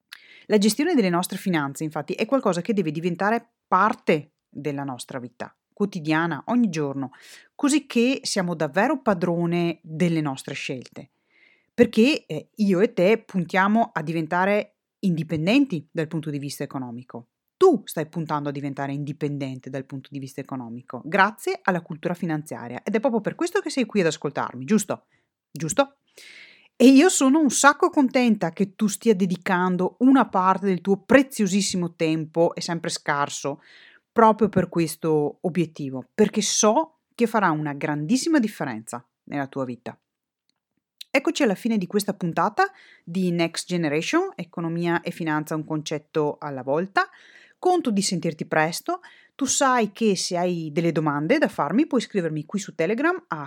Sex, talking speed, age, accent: female, 150 wpm, 30-49, native